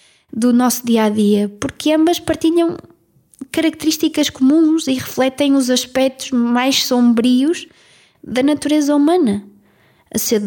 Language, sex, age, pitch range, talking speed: Portuguese, female, 20-39, 225-270 Hz, 110 wpm